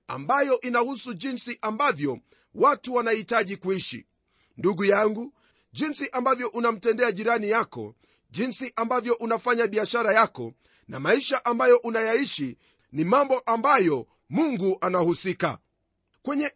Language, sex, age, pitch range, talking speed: Swahili, male, 40-59, 200-260 Hz, 105 wpm